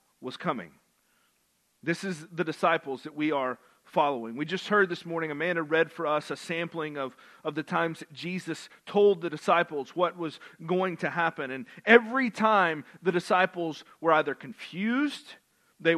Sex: male